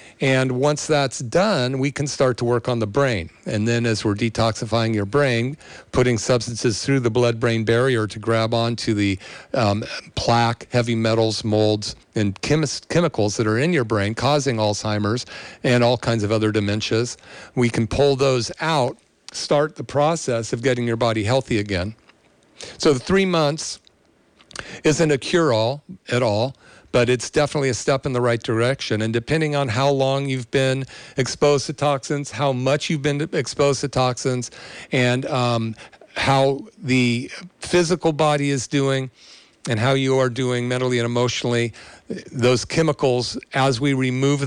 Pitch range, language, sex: 115-140 Hz, English, male